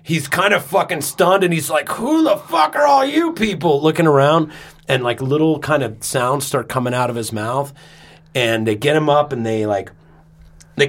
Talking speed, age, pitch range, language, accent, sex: 210 wpm, 30-49, 110-145 Hz, English, American, male